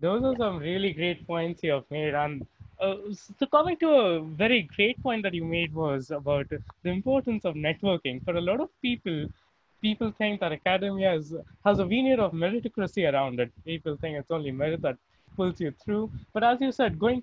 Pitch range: 155-215 Hz